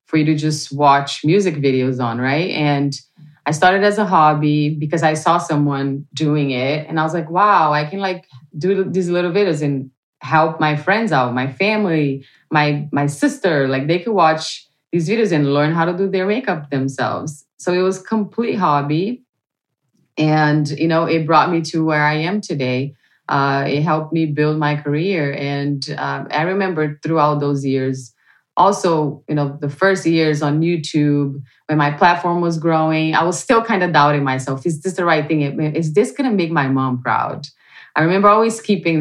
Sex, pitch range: female, 145-175 Hz